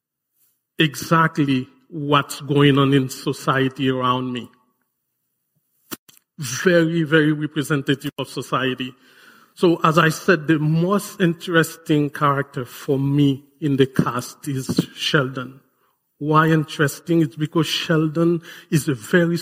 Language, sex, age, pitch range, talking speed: English, male, 40-59, 135-160 Hz, 110 wpm